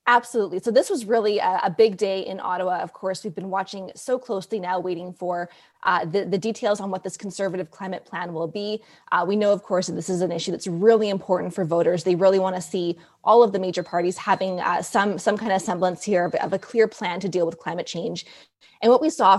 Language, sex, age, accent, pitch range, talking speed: English, female, 20-39, American, 180-210 Hz, 250 wpm